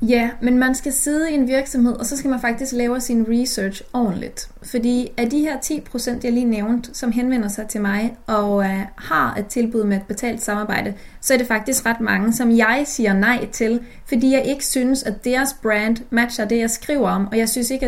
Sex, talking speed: female, 230 wpm